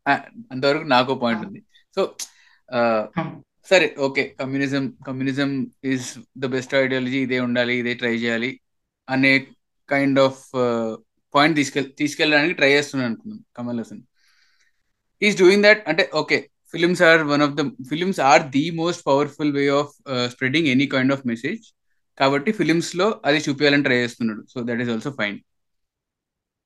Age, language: 20-39, Telugu